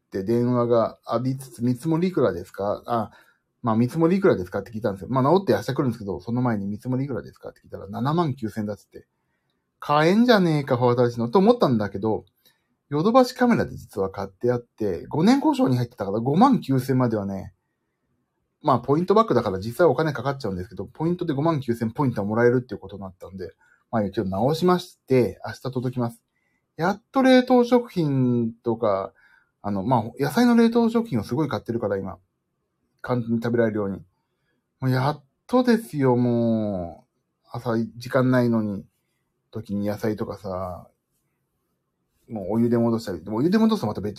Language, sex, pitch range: Japanese, male, 110-160 Hz